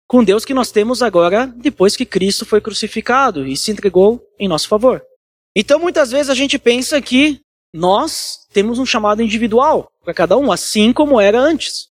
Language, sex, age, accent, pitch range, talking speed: Portuguese, male, 20-39, Brazilian, 185-255 Hz, 180 wpm